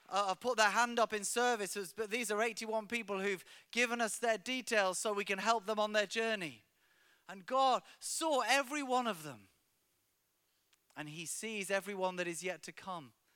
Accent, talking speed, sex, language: British, 185 wpm, male, English